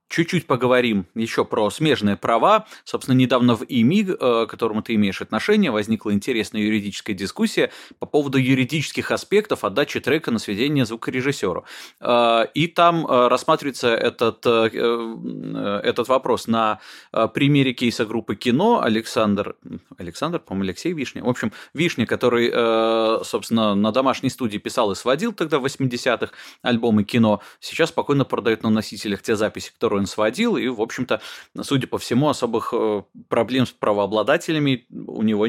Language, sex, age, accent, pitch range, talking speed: Russian, male, 20-39, native, 105-140 Hz, 135 wpm